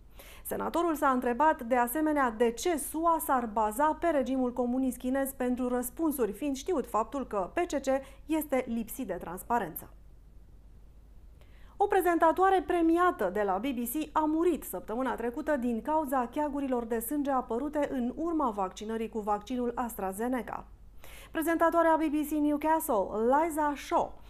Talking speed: 130 wpm